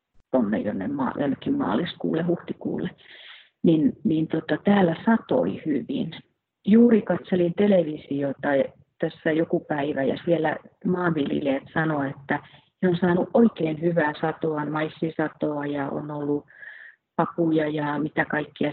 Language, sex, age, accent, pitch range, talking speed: Finnish, female, 30-49, native, 150-185 Hz, 125 wpm